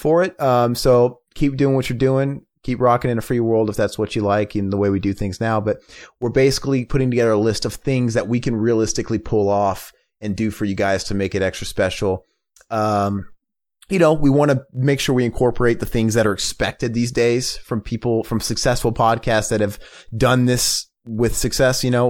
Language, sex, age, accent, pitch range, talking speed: English, male, 30-49, American, 105-130 Hz, 225 wpm